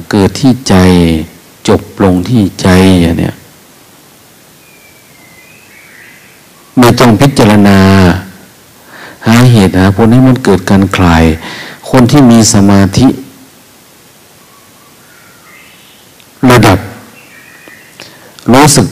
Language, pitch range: Thai, 90-110 Hz